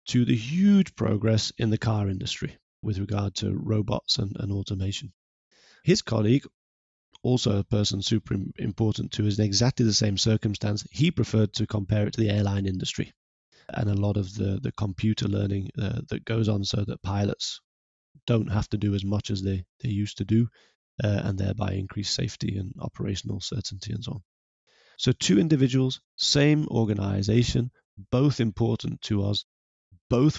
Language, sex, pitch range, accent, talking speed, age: English, male, 100-120 Hz, British, 170 wpm, 30-49